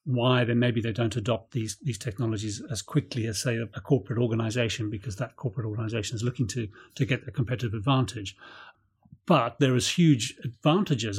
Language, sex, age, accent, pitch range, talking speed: English, male, 40-59, British, 115-145 Hz, 180 wpm